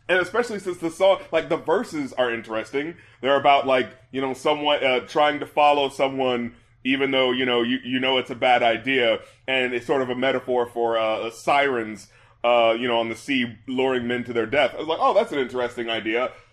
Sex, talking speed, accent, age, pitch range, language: male, 220 wpm, American, 20-39, 115-140 Hz, English